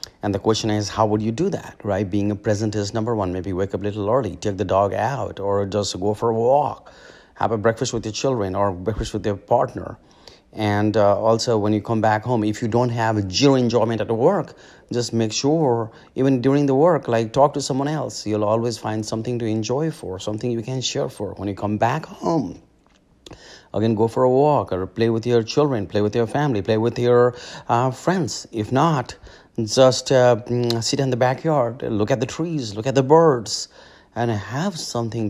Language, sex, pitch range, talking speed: English, male, 105-130 Hz, 215 wpm